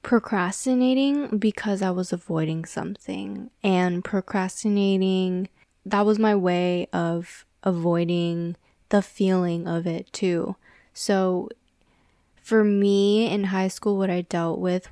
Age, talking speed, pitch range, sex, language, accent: 10-29, 115 wpm, 180-215 Hz, female, English, American